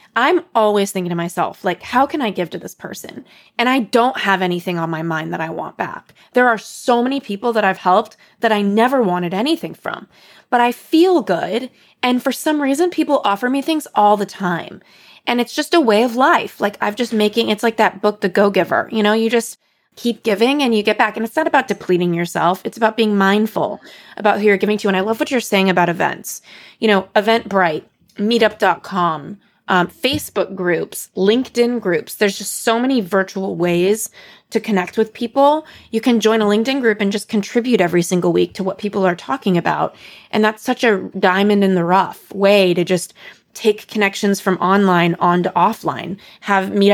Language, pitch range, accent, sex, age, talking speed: English, 190-235 Hz, American, female, 20-39, 205 wpm